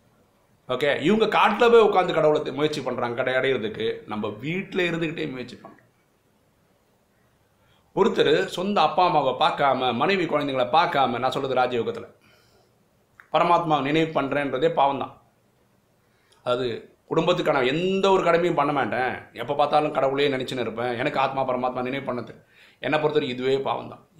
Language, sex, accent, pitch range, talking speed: Tamil, male, native, 120-160 Hz, 130 wpm